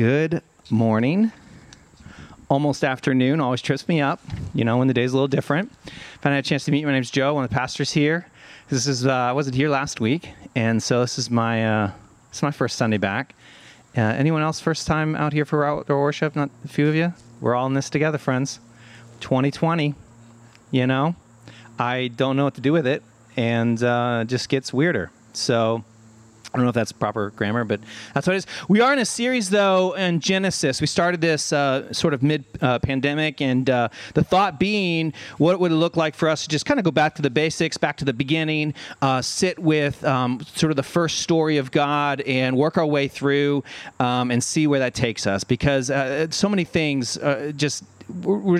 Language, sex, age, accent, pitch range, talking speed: English, male, 30-49, American, 125-160 Hz, 220 wpm